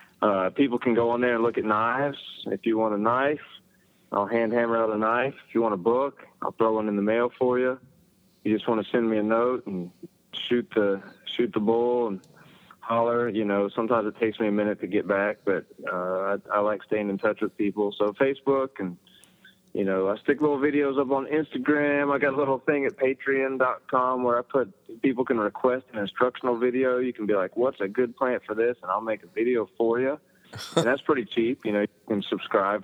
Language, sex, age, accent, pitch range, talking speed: English, male, 30-49, American, 100-125 Hz, 225 wpm